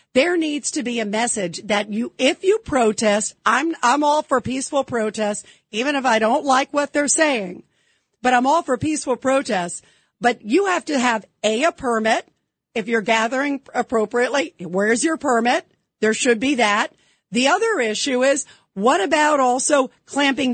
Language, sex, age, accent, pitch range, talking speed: English, female, 50-69, American, 220-280 Hz, 170 wpm